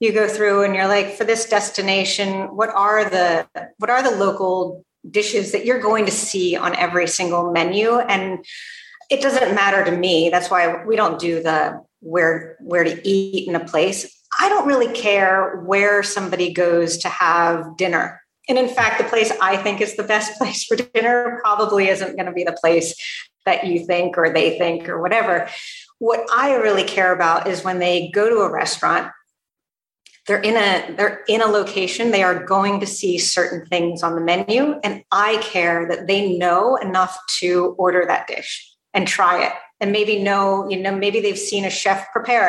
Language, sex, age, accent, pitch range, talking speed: English, female, 40-59, American, 180-215 Hz, 195 wpm